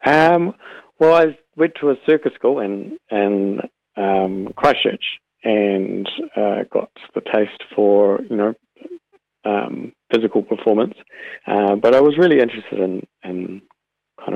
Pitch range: 95-105 Hz